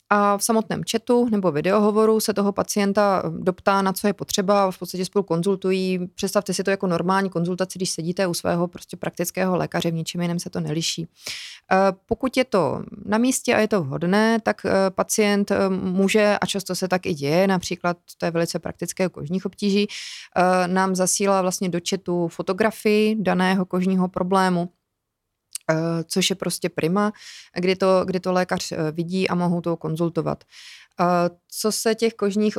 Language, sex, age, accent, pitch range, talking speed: Czech, female, 30-49, native, 175-195 Hz, 160 wpm